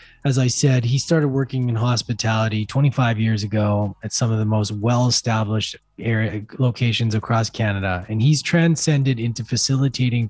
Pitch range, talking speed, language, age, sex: 115-140 Hz, 145 wpm, English, 20-39, male